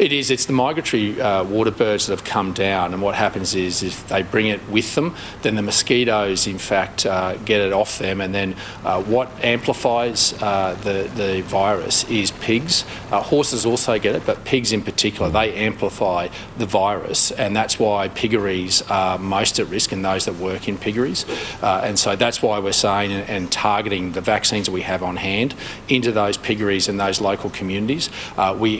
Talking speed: 195 wpm